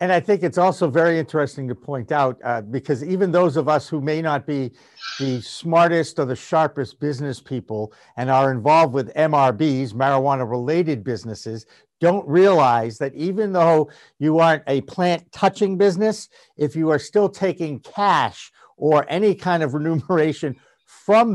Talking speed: 155 wpm